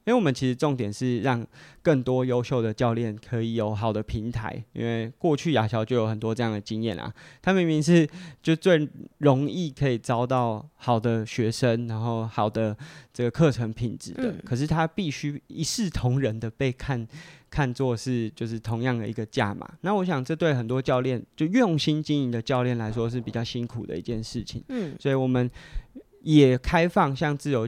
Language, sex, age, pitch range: Chinese, male, 20-39, 115-150 Hz